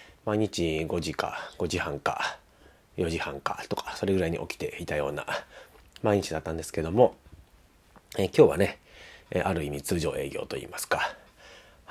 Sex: male